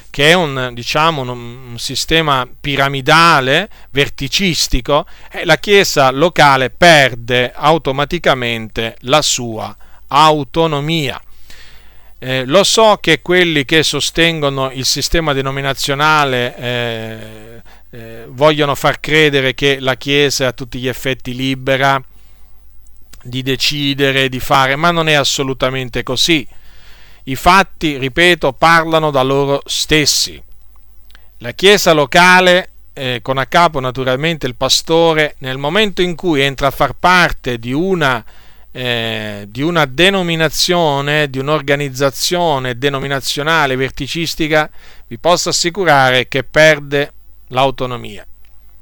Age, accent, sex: 40-59, native, male